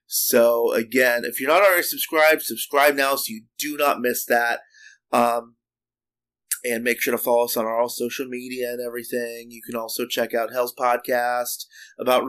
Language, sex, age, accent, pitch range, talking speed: English, male, 30-49, American, 120-200 Hz, 175 wpm